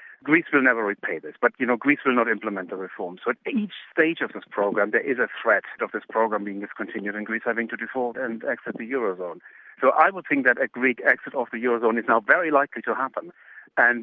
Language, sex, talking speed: English, male, 245 wpm